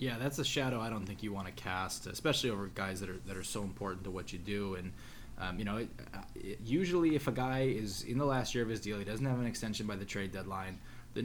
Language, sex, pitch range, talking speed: English, male, 95-120 Hz, 275 wpm